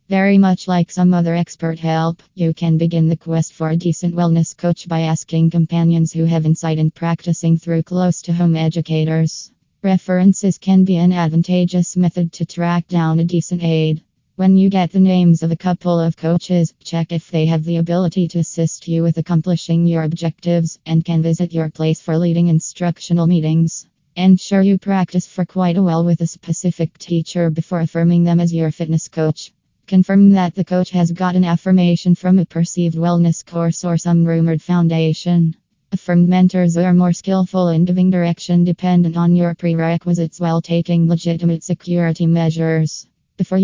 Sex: female